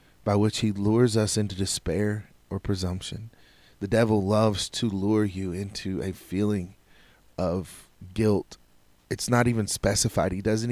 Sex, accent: male, American